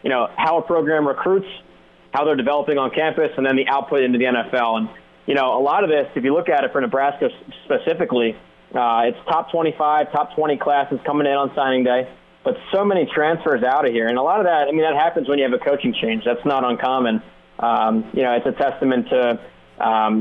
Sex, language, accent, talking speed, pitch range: male, English, American, 230 wpm, 120-145 Hz